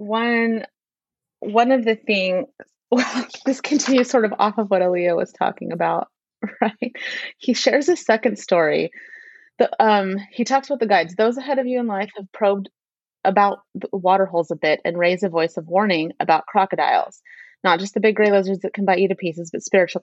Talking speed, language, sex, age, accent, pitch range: 200 wpm, English, female, 30-49, American, 175-220 Hz